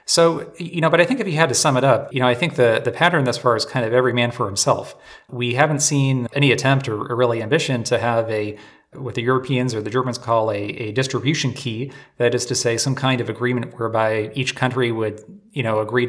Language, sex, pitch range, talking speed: English, male, 115-135 Hz, 245 wpm